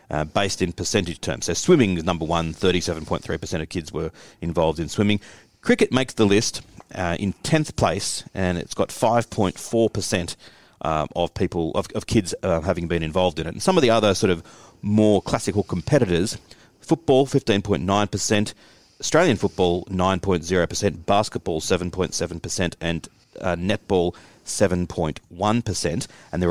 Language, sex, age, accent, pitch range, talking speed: English, male, 40-59, Australian, 90-125 Hz, 145 wpm